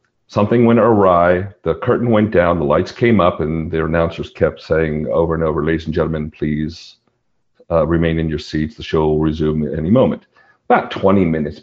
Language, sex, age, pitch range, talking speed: English, male, 50-69, 80-100 Hz, 195 wpm